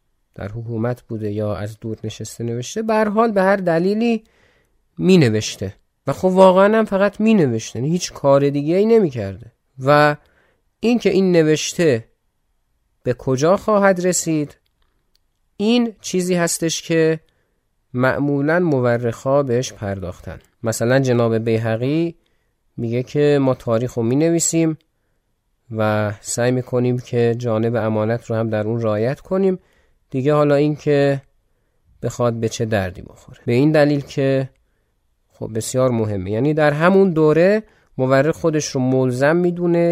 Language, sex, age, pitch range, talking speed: Persian, male, 30-49, 115-160 Hz, 135 wpm